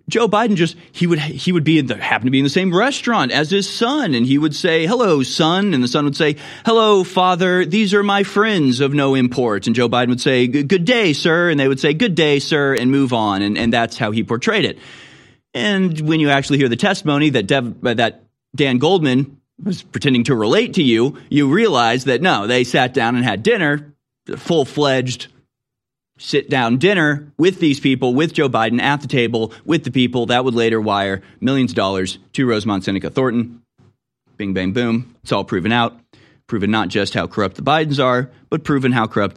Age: 30-49